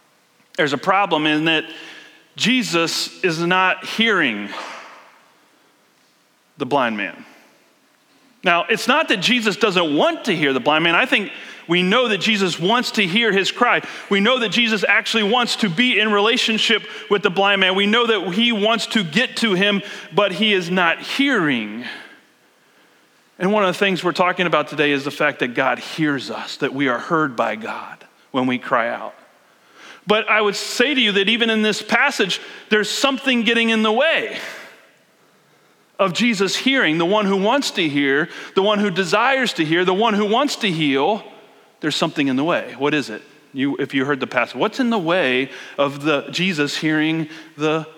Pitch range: 160-225 Hz